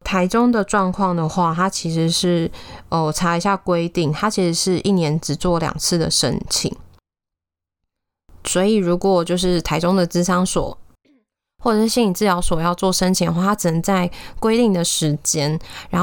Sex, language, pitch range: female, Chinese, 160-185 Hz